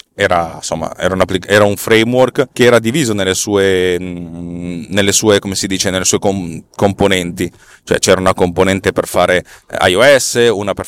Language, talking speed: Italian, 170 wpm